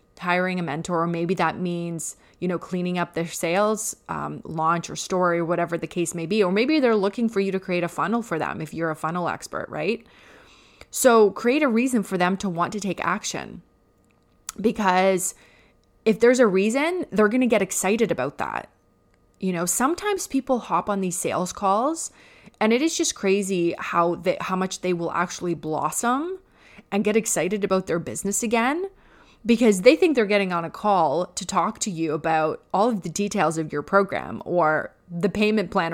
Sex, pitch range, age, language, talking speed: female, 175-220 Hz, 20-39, English, 195 wpm